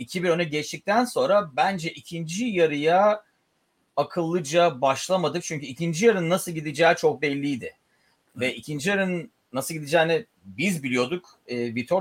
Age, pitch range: 40-59, 130-180 Hz